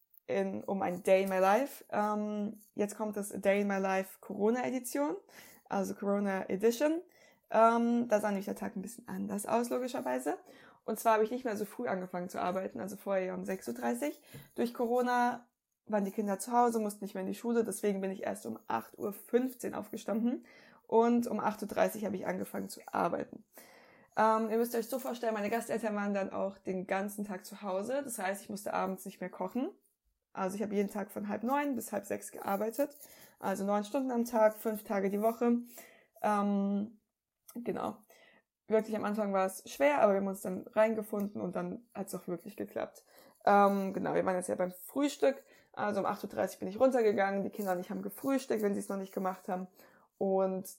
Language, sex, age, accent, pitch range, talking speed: German, female, 20-39, German, 195-235 Hz, 200 wpm